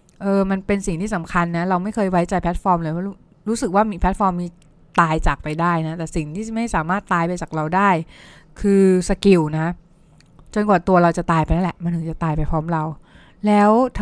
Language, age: Thai, 20-39